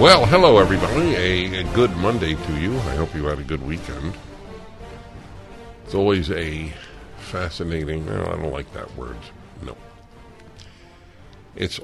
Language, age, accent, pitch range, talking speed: English, 60-79, American, 80-105 Hz, 140 wpm